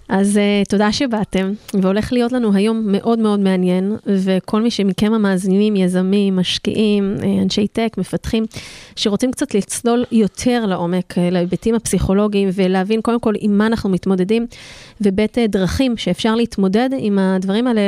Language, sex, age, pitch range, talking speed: Hebrew, female, 30-49, 190-225 Hz, 135 wpm